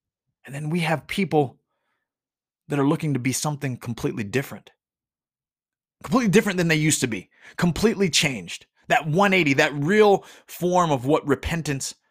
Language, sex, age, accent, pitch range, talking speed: English, male, 30-49, American, 130-170 Hz, 150 wpm